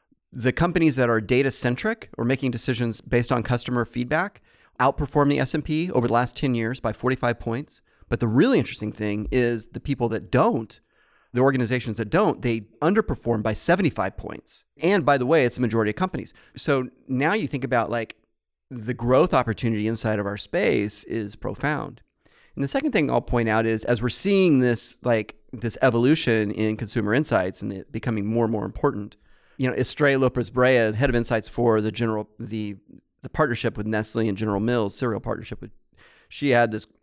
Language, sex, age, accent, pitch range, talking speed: English, male, 30-49, American, 110-125 Hz, 190 wpm